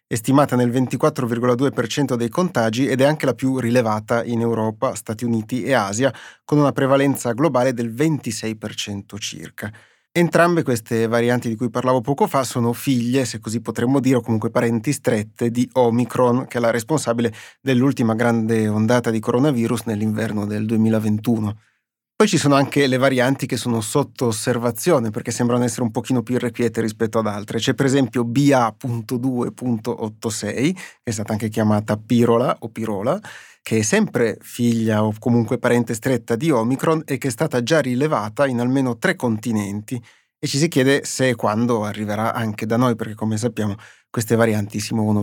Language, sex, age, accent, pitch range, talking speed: Italian, male, 30-49, native, 115-130 Hz, 170 wpm